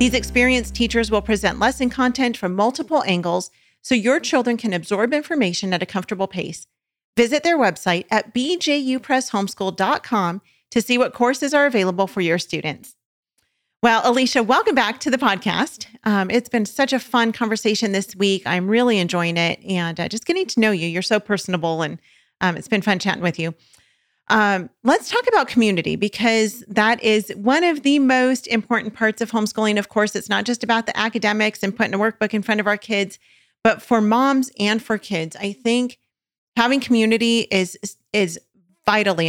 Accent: American